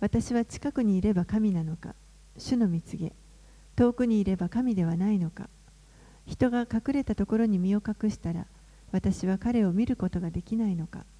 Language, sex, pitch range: Japanese, female, 180-225 Hz